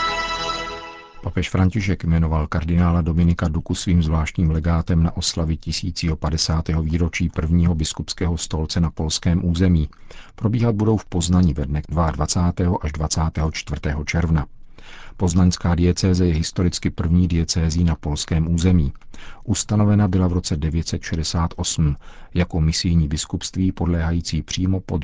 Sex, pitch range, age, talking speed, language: male, 80-90 Hz, 50-69, 115 wpm, Czech